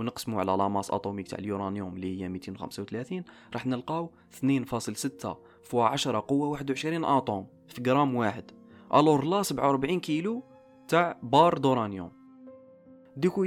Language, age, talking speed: Arabic, 20-39, 130 wpm